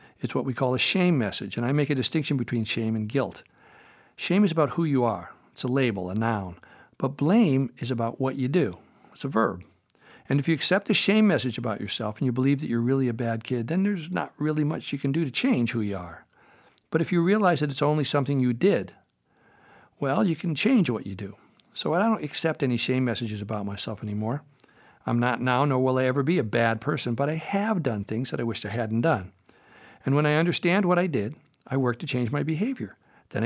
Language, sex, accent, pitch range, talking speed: English, male, American, 120-155 Hz, 235 wpm